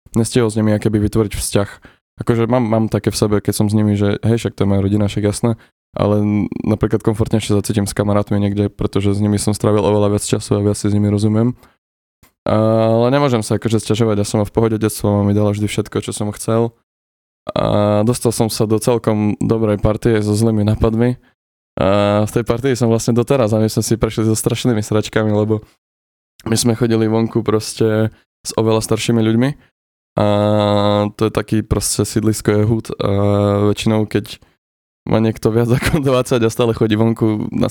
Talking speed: 190 wpm